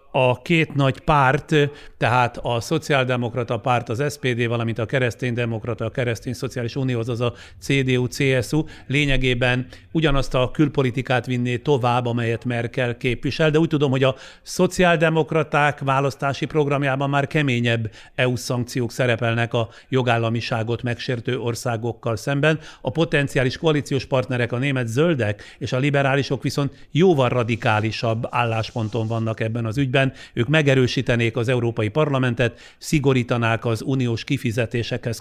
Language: Hungarian